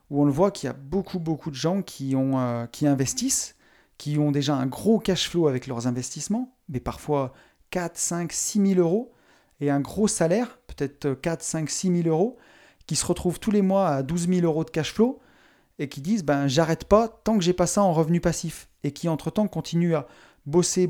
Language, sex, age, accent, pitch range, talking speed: French, male, 30-49, French, 145-180 Hz, 220 wpm